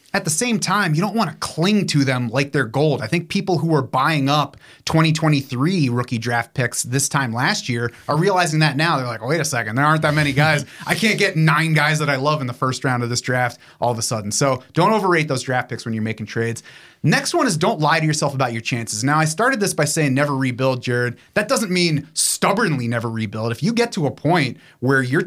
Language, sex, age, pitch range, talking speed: English, male, 30-49, 125-160 Hz, 250 wpm